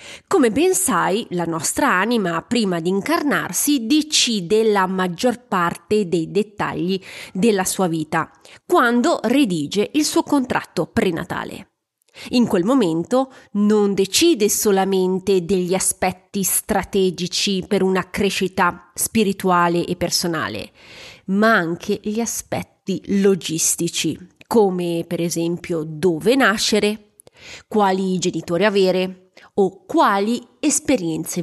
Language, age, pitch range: Italian, 30-49, 180-230 Hz